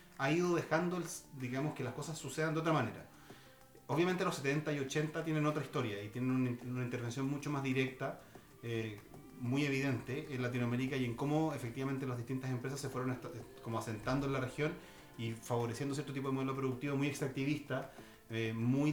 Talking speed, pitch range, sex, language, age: 180 wpm, 120-145 Hz, male, Spanish, 30-49